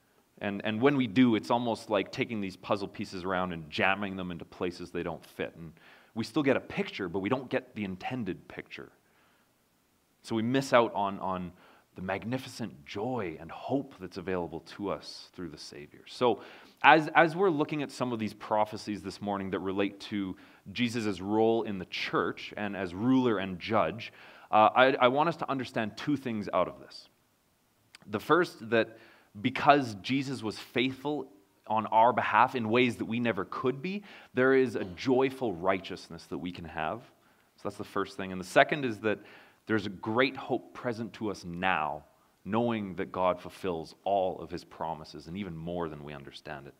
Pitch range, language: 95-125 Hz, English